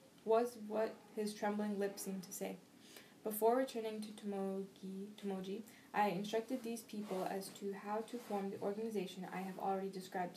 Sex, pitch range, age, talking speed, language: female, 195-220 Hz, 10-29, 160 wpm, English